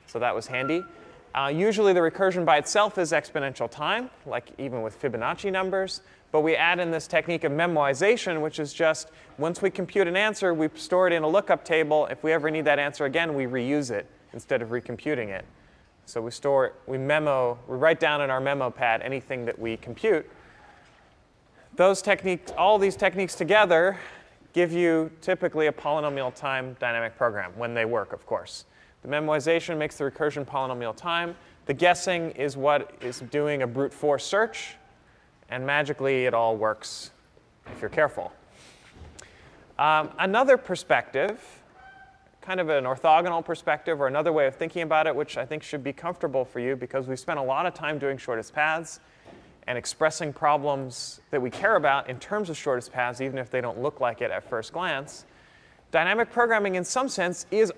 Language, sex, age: English, male, 30-49